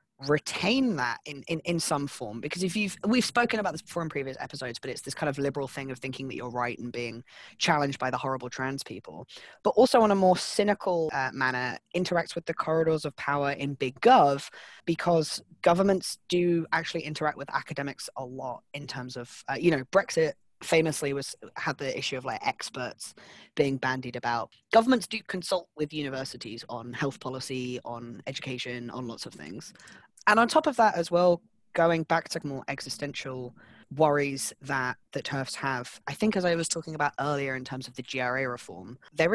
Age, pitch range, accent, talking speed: 20-39, 130-170 Hz, British, 195 wpm